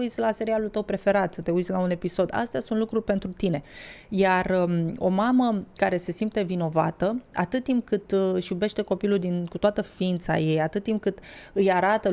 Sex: female